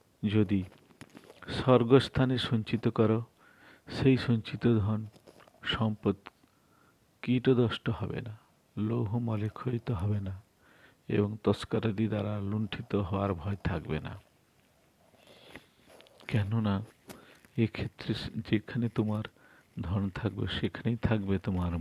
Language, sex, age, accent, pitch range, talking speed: Bengali, male, 50-69, native, 105-125 Hz, 65 wpm